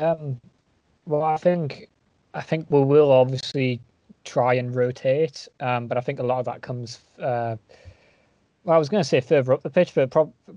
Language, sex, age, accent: English, male, 20-39, British